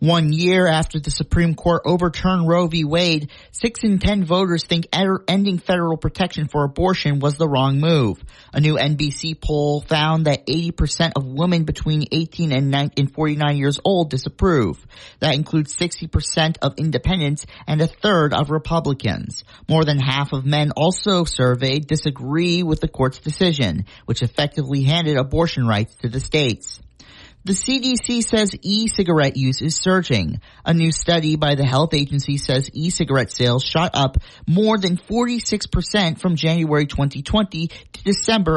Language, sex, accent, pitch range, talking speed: English, male, American, 140-175 Hz, 150 wpm